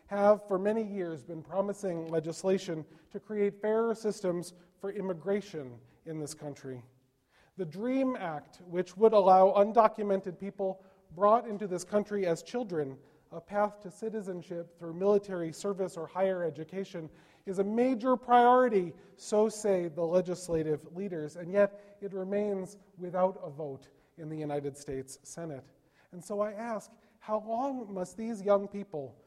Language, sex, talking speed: English, male, 145 wpm